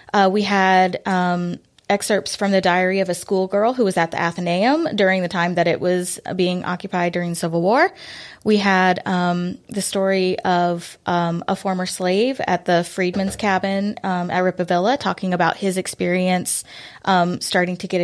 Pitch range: 180-210 Hz